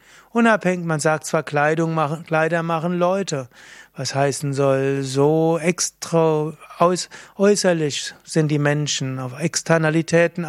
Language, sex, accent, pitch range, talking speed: German, male, German, 145-175 Hz, 120 wpm